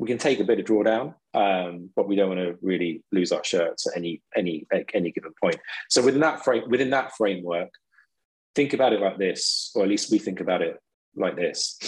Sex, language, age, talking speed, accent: male, English, 20-39, 220 wpm, British